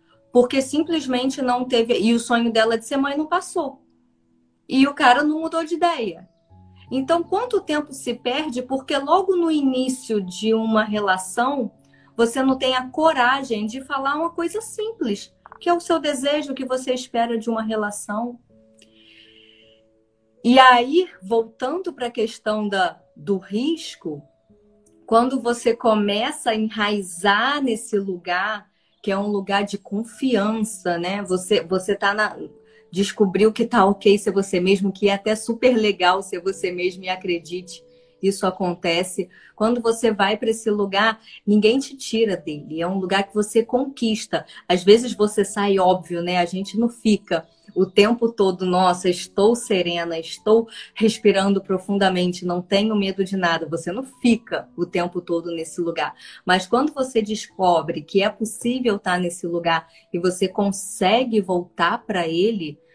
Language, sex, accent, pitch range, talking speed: Portuguese, female, Brazilian, 180-240 Hz, 155 wpm